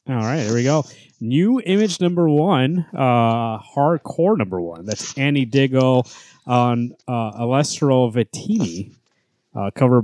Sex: male